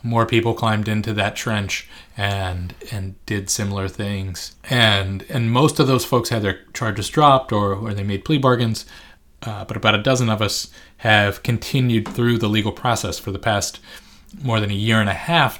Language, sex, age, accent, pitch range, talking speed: English, male, 30-49, American, 95-115 Hz, 190 wpm